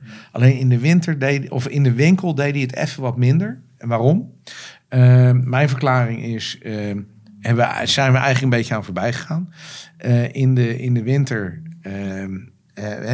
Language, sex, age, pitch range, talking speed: Dutch, male, 50-69, 115-140 Hz, 170 wpm